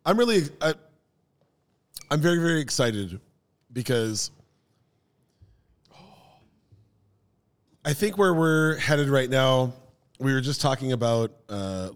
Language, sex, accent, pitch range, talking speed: English, male, American, 105-135 Hz, 100 wpm